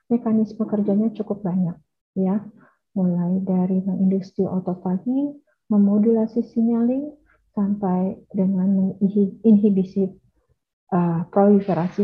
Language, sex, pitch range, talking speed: Indonesian, female, 185-220 Hz, 80 wpm